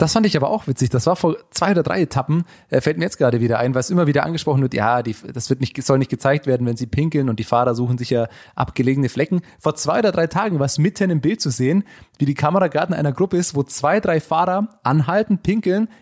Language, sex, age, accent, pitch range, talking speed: German, male, 30-49, German, 125-155 Hz, 265 wpm